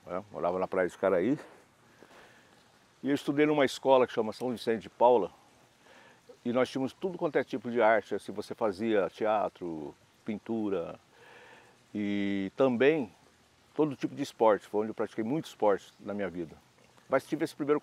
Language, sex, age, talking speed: Portuguese, male, 60-79, 170 wpm